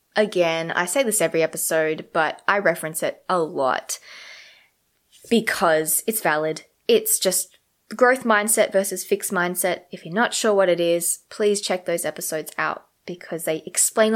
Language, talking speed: English, 155 wpm